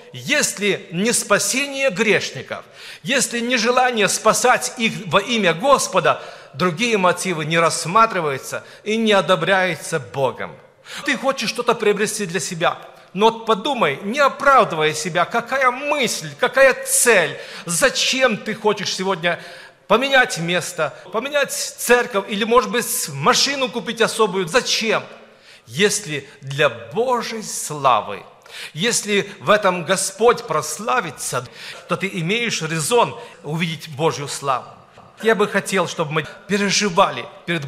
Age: 50-69